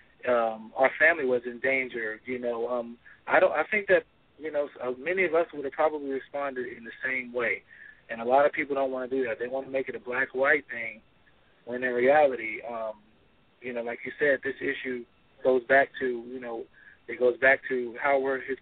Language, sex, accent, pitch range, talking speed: English, male, American, 125-150 Hz, 220 wpm